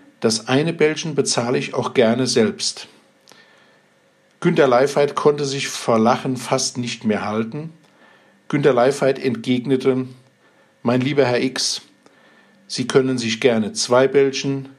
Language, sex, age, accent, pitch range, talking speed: German, male, 50-69, German, 120-140 Hz, 125 wpm